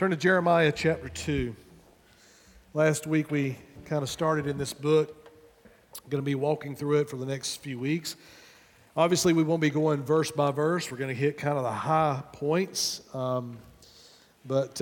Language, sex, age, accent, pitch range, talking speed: English, male, 40-59, American, 130-165 Hz, 180 wpm